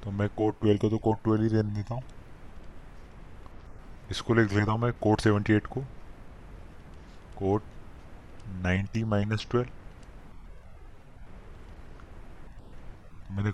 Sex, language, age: male, Hindi, 20-39